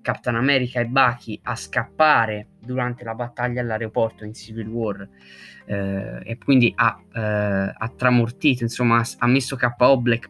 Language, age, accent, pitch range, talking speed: Italian, 20-39, native, 105-130 Hz, 145 wpm